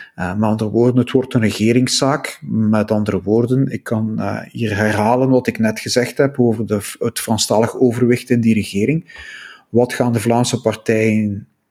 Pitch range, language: 110-130 Hz, Dutch